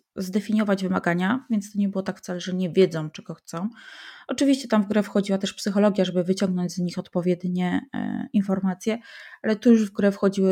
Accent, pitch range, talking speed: native, 190-240 Hz, 190 wpm